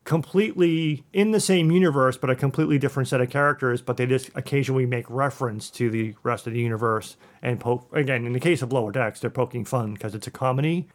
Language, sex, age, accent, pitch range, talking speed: English, male, 40-59, American, 125-150 Hz, 220 wpm